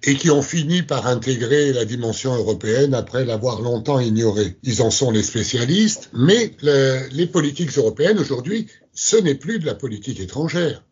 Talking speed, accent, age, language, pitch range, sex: 170 wpm, French, 60-79, French, 110-150 Hz, male